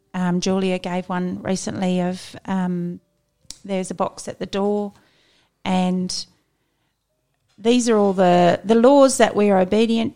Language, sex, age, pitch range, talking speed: English, female, 40-59, 175-210 Hz, 140 wpm